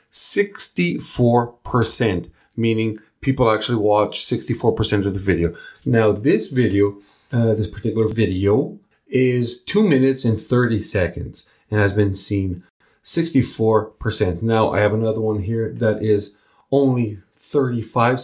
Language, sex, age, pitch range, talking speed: English, male, 40-59, 105-125 Hz, 120 wpm